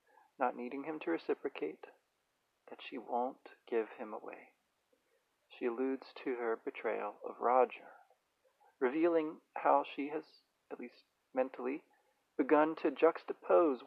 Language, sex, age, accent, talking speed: English, male, 40-59, American, 120 wpm